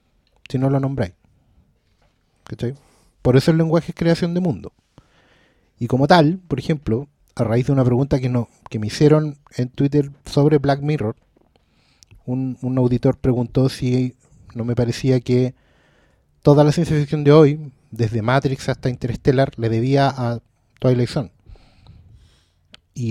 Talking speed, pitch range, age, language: 145 wpm, 125-160 Hz, 30-49, Spanish